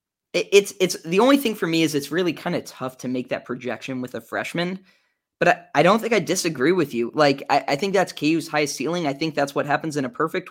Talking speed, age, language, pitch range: 255 wpm, 10-29, English, 130-160 Hz